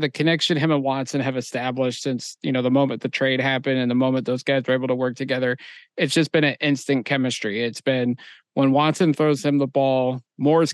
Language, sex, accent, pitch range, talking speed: English, male, American, 130-150 Hz, 225 wpm